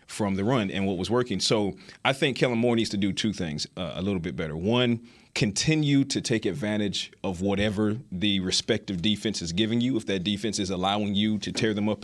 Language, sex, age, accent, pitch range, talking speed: English, male, 40-59, American, 95-125 Hz, 225 wpm